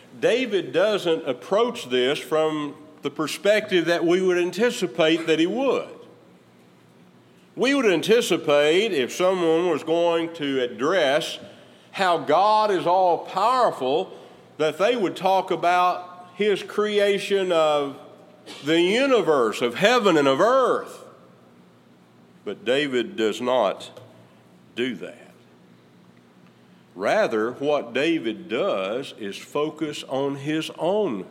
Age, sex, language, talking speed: 50-69, male, English, 110 wpm